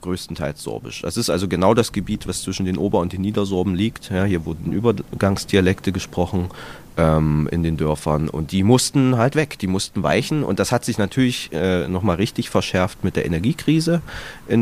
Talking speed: 185 wpm